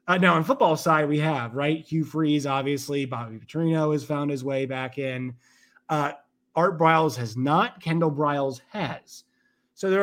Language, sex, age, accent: English, male, 30-49, American